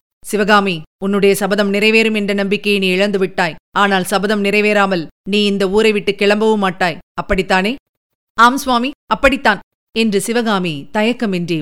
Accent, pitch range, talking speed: native, 195-225 Hz, 130 wpm